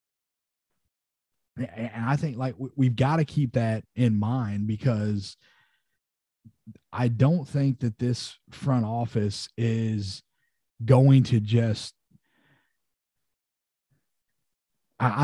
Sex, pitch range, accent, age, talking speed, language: male, 110-130 Hz, American, 30-49, 95 wpm, English